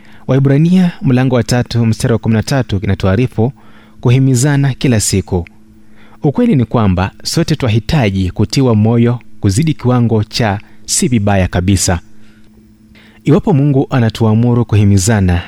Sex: male